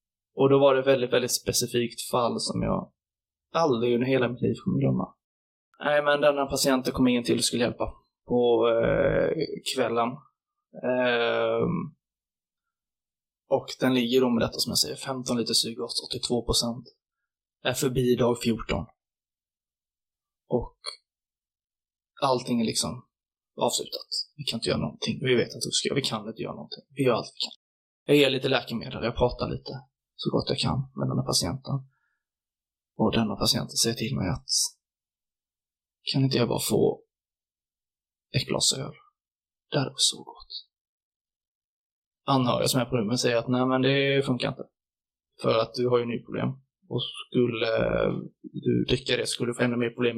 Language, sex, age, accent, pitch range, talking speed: Swedish, male, 20-39, native, 115-135 Hz, 170 wpm